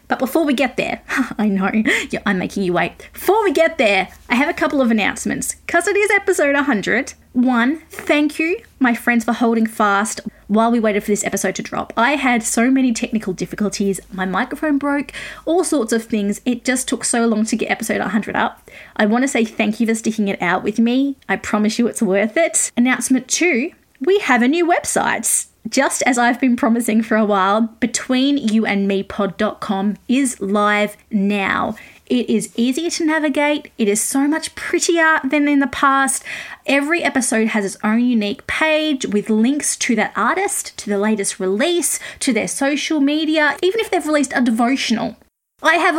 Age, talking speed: 20-39, 190 wpm